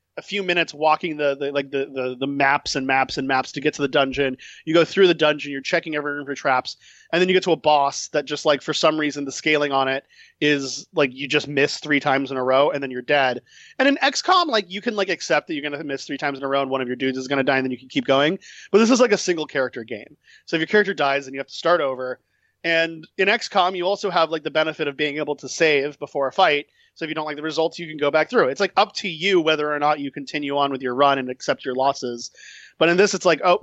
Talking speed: 295 wpm